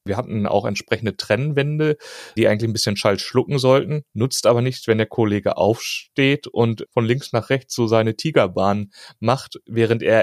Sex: male